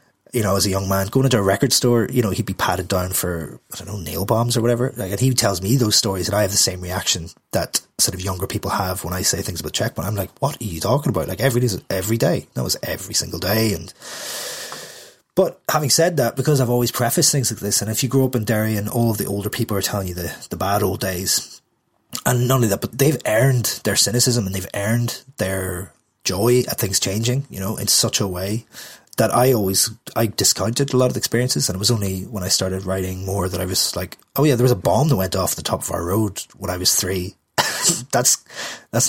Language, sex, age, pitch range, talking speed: English, male, 30-49, 95-125 Hz, 255 wpm